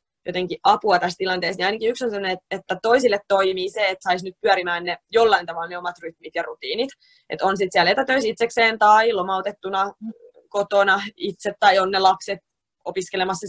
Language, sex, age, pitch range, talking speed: Finnish, female, 20-39, 175-215 Hz, 180 wpm